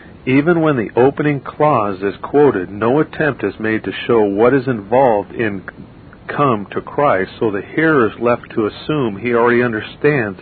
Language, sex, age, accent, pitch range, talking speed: English, male, 50-69, American, 105-135 Hz, 175 wpm